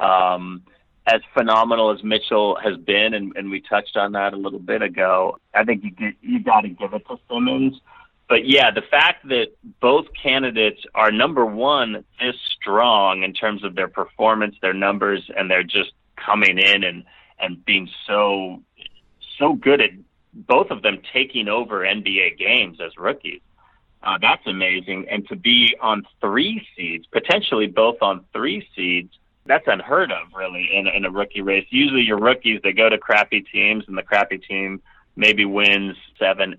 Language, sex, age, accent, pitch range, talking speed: English, male, 30-49, American, 95-110 Hz, 170 wpm